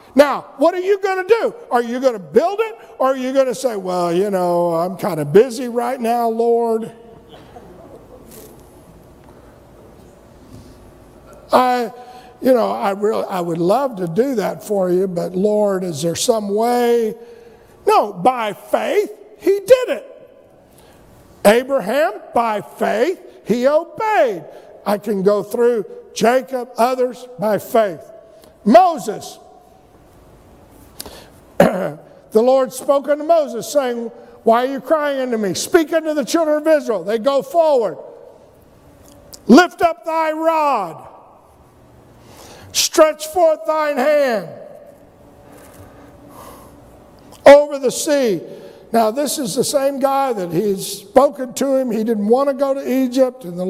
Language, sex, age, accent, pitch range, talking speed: English, male, 50-69, American, 220-305 Hz, 135 wpm